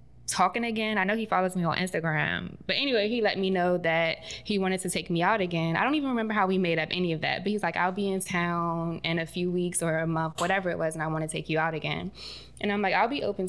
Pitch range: 170-210 Hz